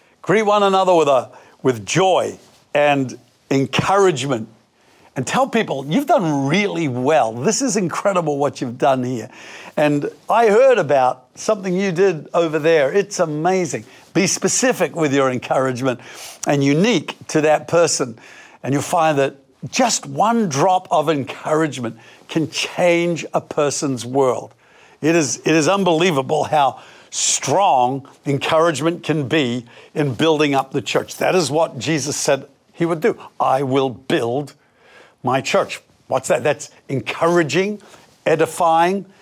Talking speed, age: 140 wpm, 60-79